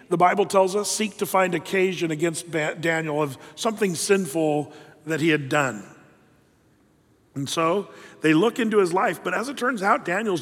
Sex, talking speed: male, 175 wpm